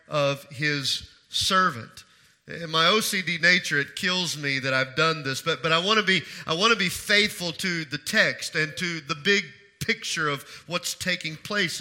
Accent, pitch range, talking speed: American, 150-195 Hz, 190 wpm